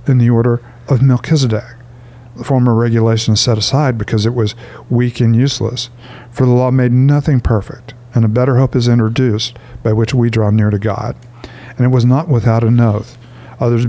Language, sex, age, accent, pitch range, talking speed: English, male, 50-69, American, 115-125 Hz, 190 wpm